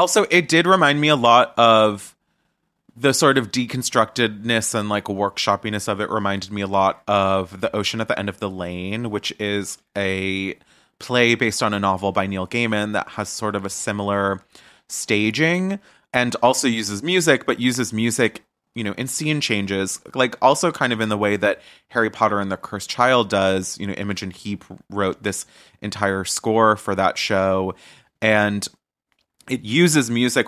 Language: English